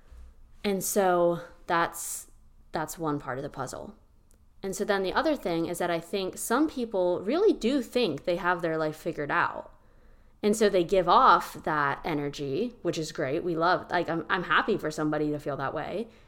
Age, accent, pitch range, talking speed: 20-39, American, 155-215 Hz, 190 wpm